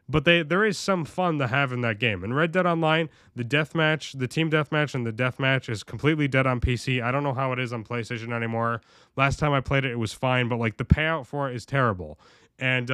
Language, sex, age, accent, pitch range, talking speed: English, male, 20-39, American, 115-155 Hz, 265 wpm